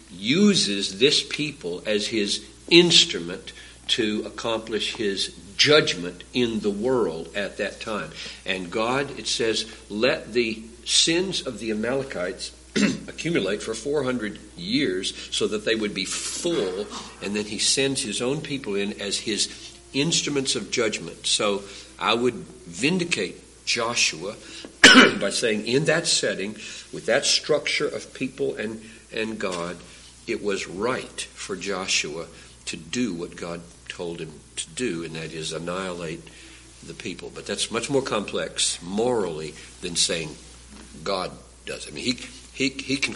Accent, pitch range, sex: American, 85-125 Hz, male